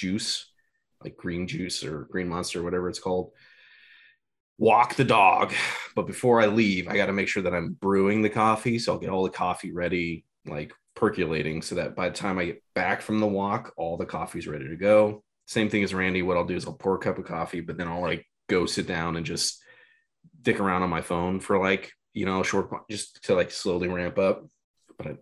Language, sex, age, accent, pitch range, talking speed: English, male, 30-49, American, 90-110 Hz, 220 wpm